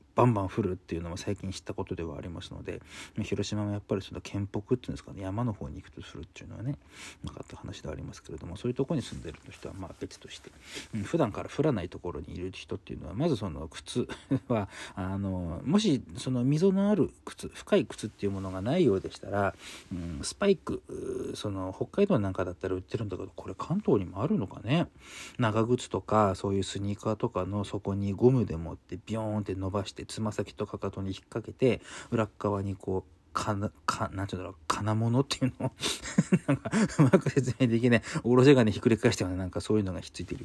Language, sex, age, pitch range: Japanese, male, 40-59, 95-130 Hz